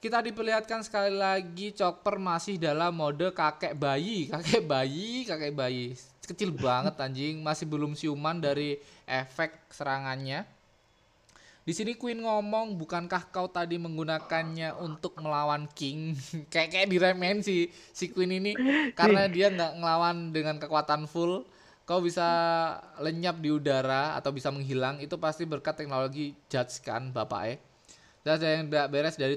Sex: male